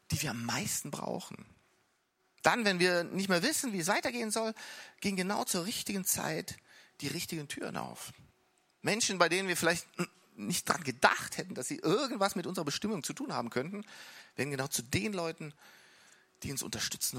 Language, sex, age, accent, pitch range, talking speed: German, male, 40-59, German, 140-215 Hz, 180 wpm